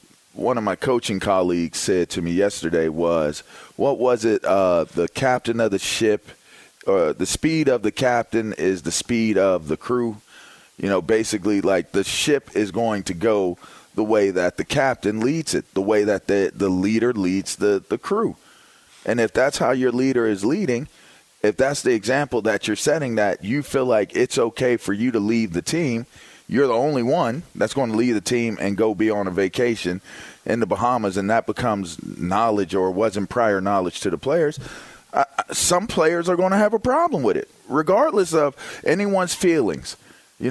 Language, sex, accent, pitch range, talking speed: English, male, American, 100-135 Hz, 195 wpm